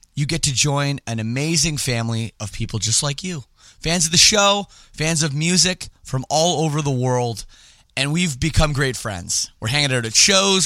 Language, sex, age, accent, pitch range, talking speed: English, male, 30-49, American, 110-160 Hz, 190 wpm